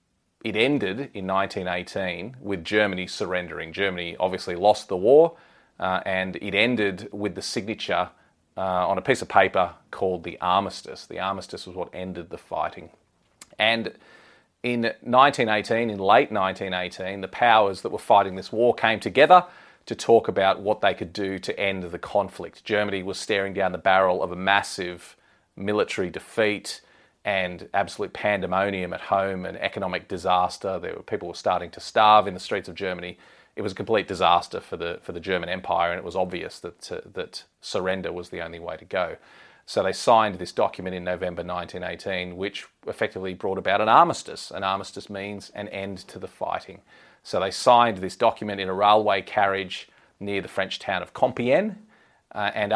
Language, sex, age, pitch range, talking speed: English, male, 30-49, 95-105 Hz, 175 wpm